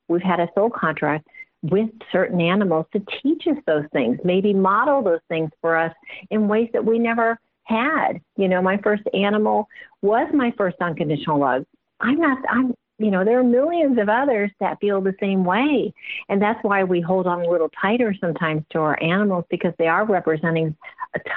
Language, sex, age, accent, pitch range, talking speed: English, female, 50-69, American, 165-220 Hz, 190 wpm